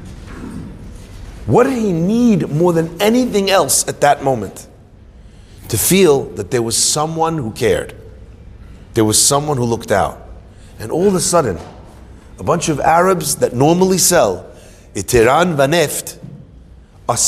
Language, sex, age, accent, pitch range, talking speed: English, male, 40-59, American, 130-185 Hz, 145 wpm